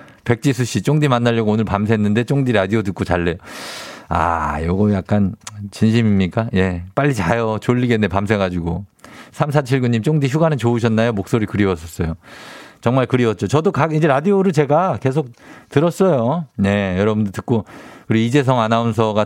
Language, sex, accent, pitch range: Korean, male, native, 100-140 Hz